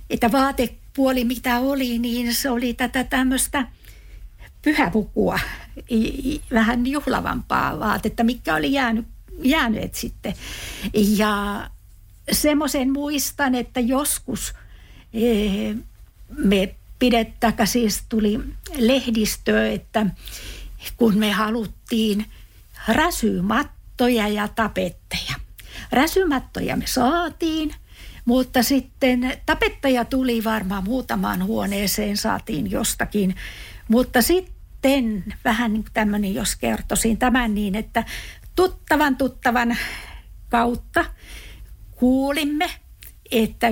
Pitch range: 215-265 Hz